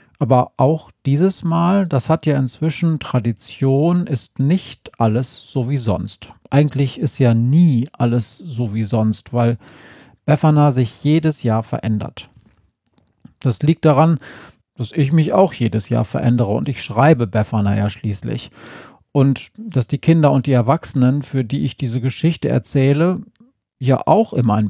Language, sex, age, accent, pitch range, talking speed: German, male, 40-59, German, 115-150 Hz, 150 wpm